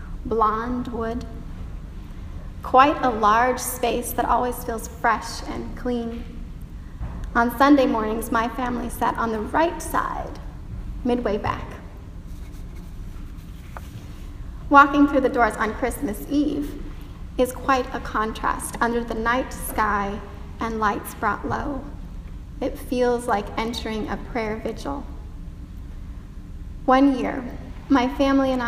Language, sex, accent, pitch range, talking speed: English, female, American, 215-260 Hz, 115 wpm